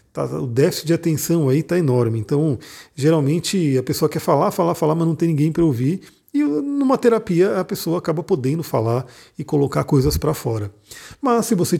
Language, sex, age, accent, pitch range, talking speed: Portuguese, male, 40-59, Brazilian, 130-170 Hz, 190 wpm